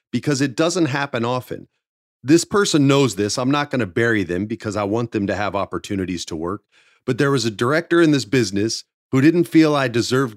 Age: 30-49